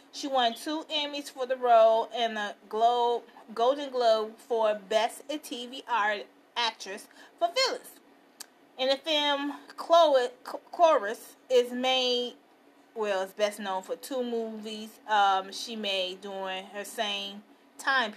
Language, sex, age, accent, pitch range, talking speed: English, female, 30-49, American, 215-275 Hz, 130 wpm